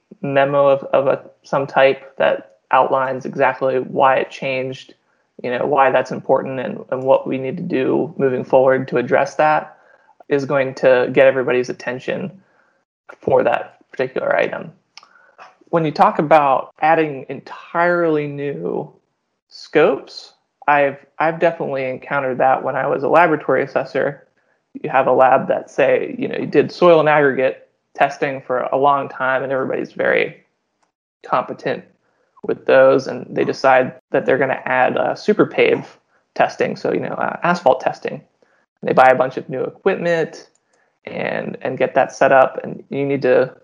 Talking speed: 160 wpm